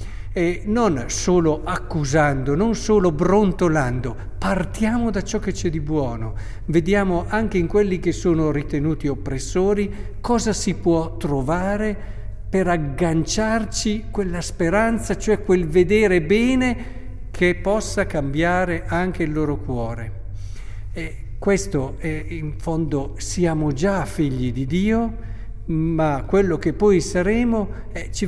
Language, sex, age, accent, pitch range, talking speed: Italian, male, 60-79, native, 140-205 Hz, 125 wpm